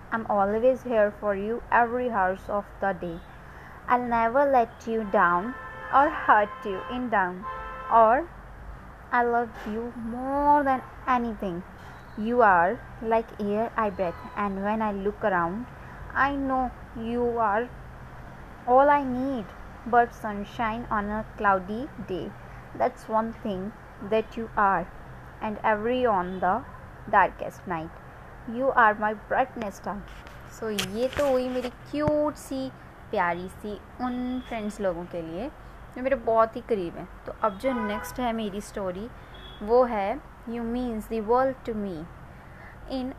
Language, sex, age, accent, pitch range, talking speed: Hindi, female, 20-39, native, 205-245 Hz, 145 wpm